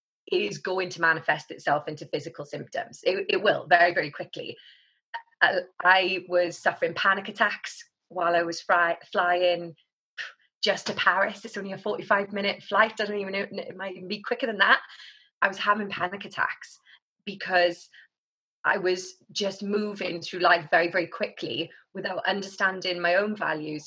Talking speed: 160 wpm